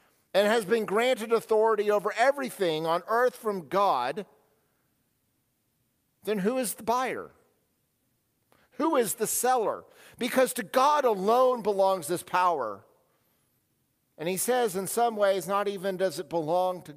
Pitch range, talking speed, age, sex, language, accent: 145-200 Hz, 140 wpm, 50-69, male, English, American